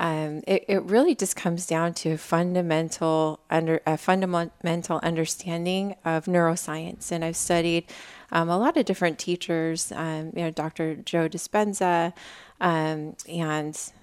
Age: 30-49